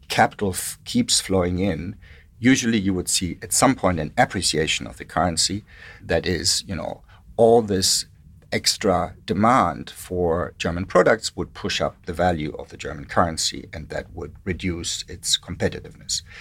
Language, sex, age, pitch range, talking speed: English, male, 60-79, 90-120 Hz, 155 wpm